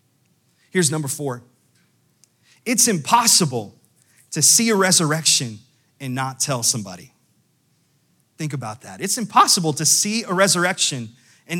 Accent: American